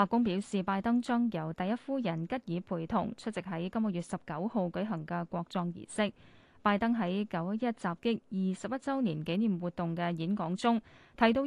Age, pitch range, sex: 20-39, 180-235 Hz, female